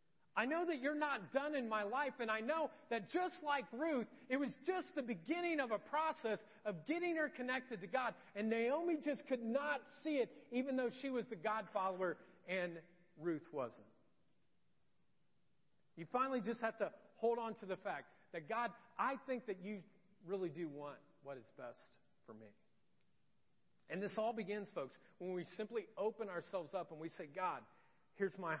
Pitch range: 180-270 Hz